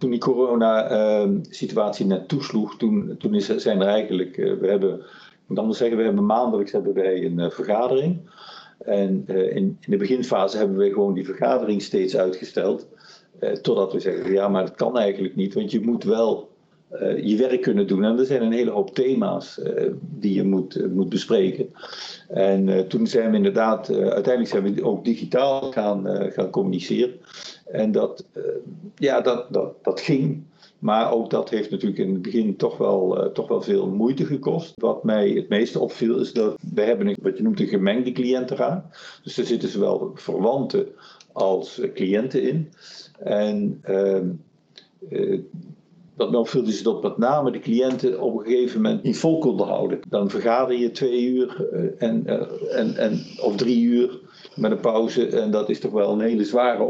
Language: Dutch